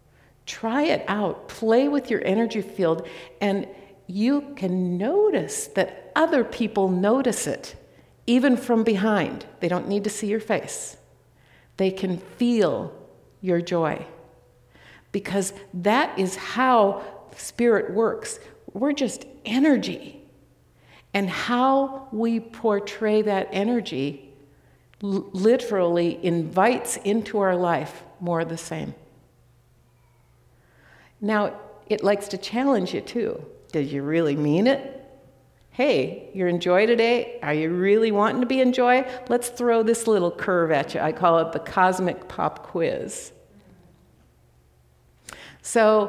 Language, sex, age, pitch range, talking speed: English, female, 60-79, 165-235 Hz, 125 wpm